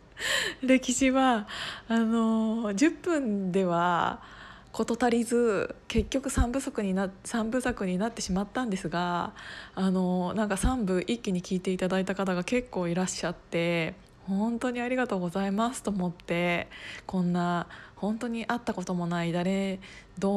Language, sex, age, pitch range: Japanese, female, 20-39, 185-230 Hz